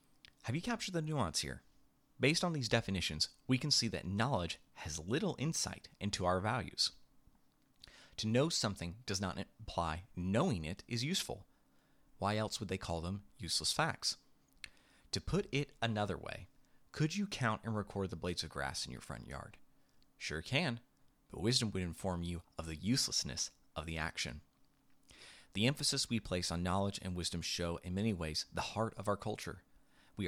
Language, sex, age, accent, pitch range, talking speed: English, male, 30-49, American, 90-120 Hz, 175 wpm